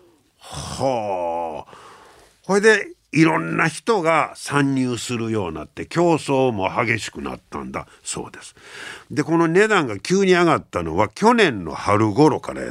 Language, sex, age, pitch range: Japanese, male, 50-69, 115-185 Hz